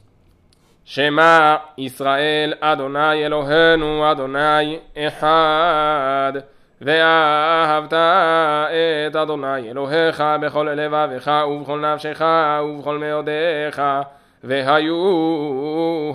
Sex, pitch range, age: male, 150-160 Hz, 20-39